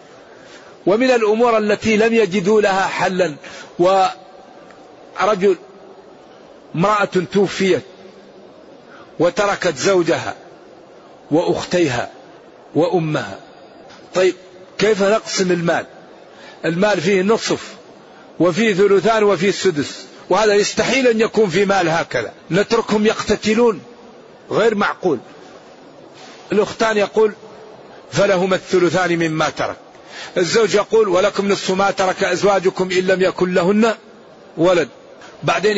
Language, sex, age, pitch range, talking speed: Arabic, male, 50-69, 180-210 Hz, 90 wpm